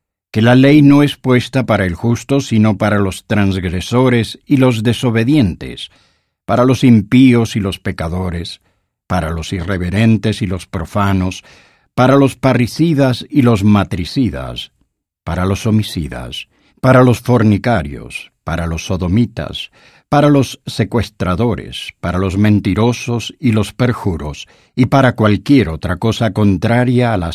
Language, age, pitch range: English, 50-69, 95-125 Hz